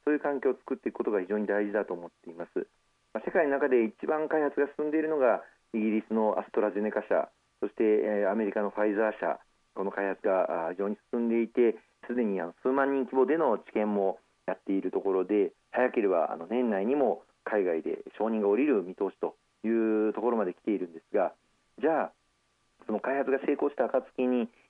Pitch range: 105-140 Hz